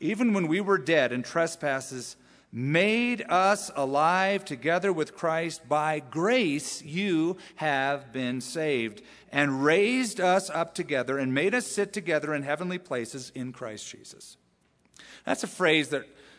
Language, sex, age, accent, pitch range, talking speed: English, male, 40-59, American, 125-180 Hz, 145 wpm